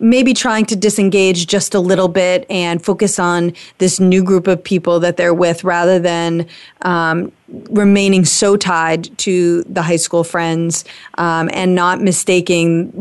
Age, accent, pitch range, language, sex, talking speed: 30-49, American, 175-210 Hz, English, female, 155 wpm